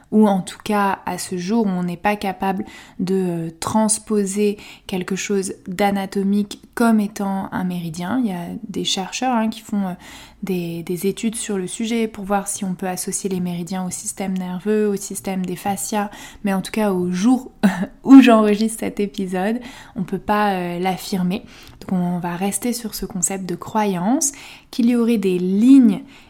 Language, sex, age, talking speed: French, female, 20-39, 180 wpm